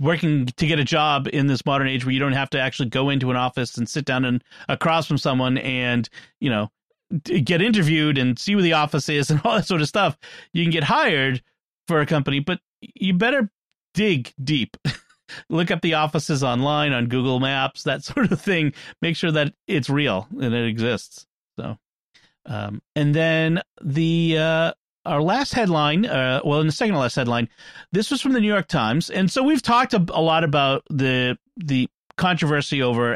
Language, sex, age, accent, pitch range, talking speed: English, male, 40-59, American, 135-180 Hz, 195 wpm